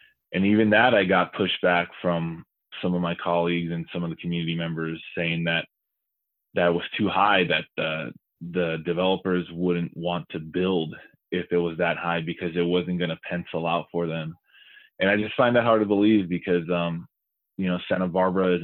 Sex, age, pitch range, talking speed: male, 20-39, 85-90 Hz, 195 wpm